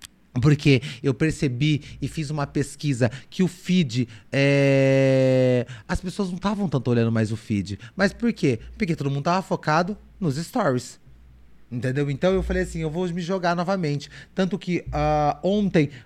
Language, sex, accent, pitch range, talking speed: Portuguese, male, Brazilian, 130-185 Hz, 155 wpm